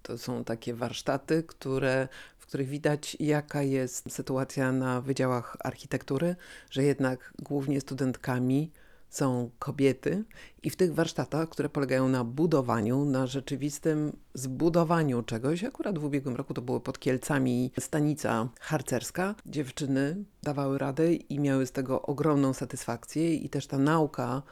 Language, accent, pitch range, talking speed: Polish, native, 130-160 Hz, 130 wpm